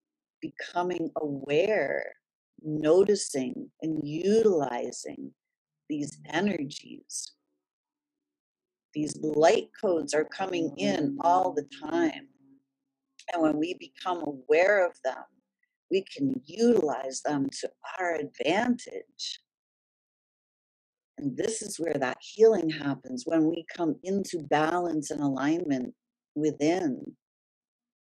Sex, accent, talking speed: female, American, 95 wpm